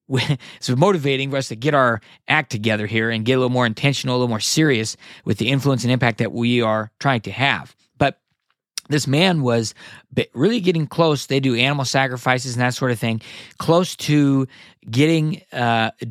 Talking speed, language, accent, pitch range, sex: 190 wpm, English, American, 115-140 Hz, male